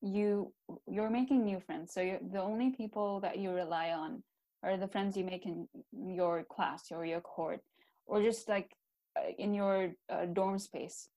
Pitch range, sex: 175-210 Hz, female